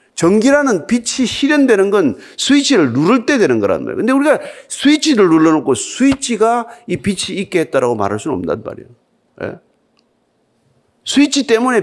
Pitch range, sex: 180-280 Hz, male